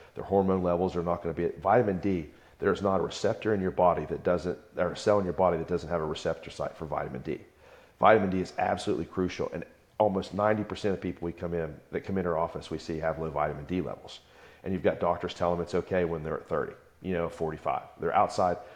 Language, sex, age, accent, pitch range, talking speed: English, male, 40-59, American, 85-95 Hz, 245 wpm